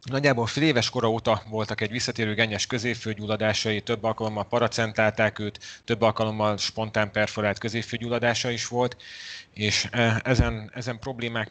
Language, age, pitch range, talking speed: Hungarian, 30-49, 105-120 Hz, 130 wpm